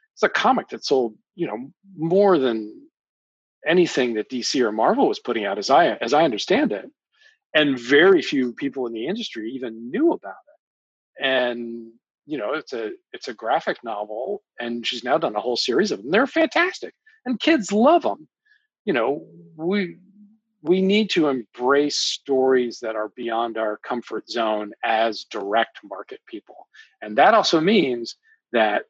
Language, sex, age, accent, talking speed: English, male, 40-59, American, 170 wpm